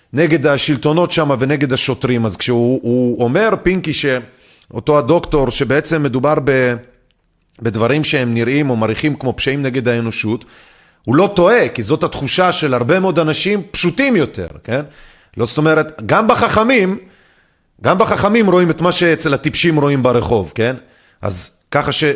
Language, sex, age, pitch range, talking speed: Hebrew, male, 30-49, 120-160 Hz, 150 wpm